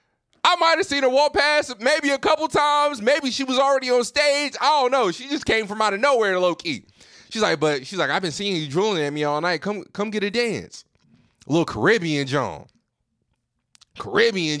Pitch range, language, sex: 185-305 Hz, English, male